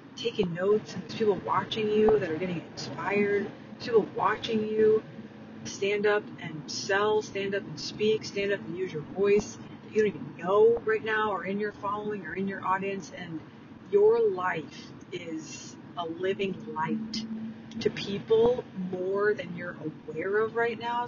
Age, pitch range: 40-59, 195-235 Hz